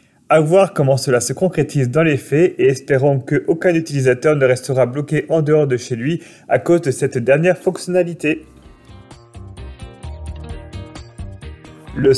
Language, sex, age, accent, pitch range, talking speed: French, male, 30-49, French, 130-165 Hz, 140 wpm